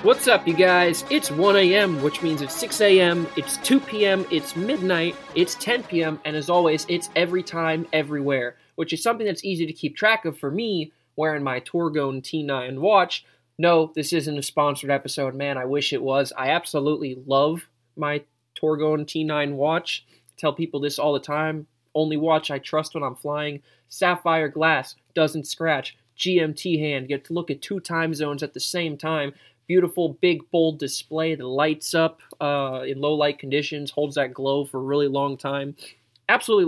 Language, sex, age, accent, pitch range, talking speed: English, male, 20-39, American, 140-170 Hz, 180 wpm